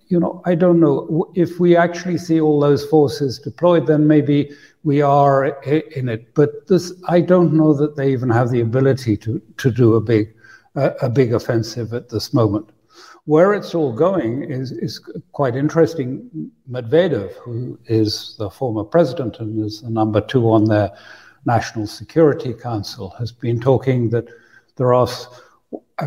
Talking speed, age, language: 165 wpm, 60-79, English